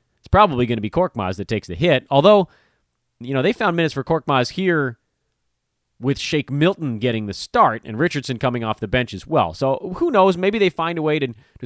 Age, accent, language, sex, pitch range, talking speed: 30-49, American, English, male, 120-170 Hz, 220 wpm